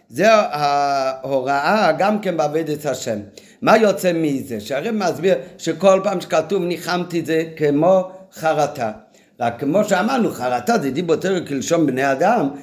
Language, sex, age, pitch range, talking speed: Hebrew, male, 50-69, 145-185 Hz, 145 wpm